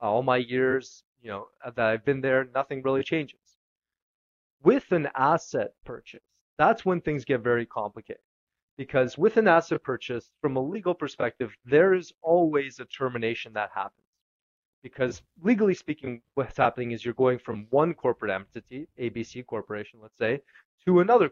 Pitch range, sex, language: 120-160 Hz, male, English